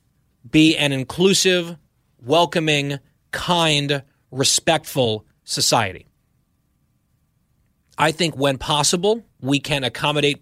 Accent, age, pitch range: American, 30-49, 135-175 Hz